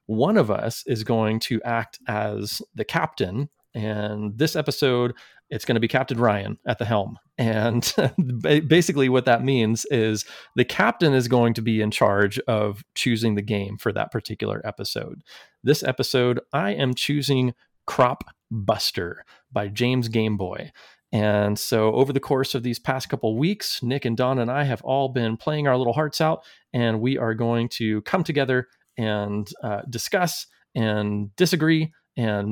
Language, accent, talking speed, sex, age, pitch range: English, American, 165 wpm, male, 30-49, 110-140 Hz